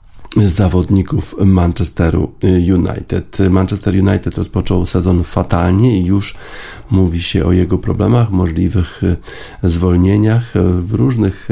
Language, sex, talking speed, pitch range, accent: Polish, male, 100 wpm, 90-105 Hz, native